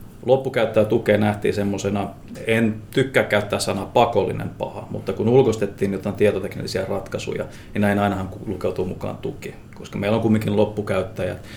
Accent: native